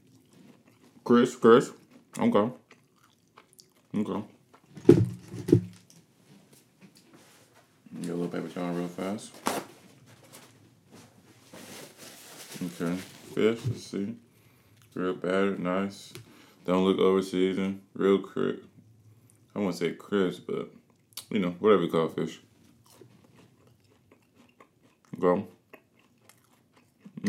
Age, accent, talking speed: 20-39, American, 90 wpm